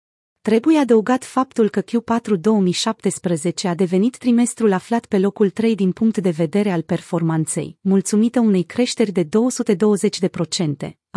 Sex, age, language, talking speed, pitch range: female, 30-49, Romanian, 130 wpm, 175-225 Hz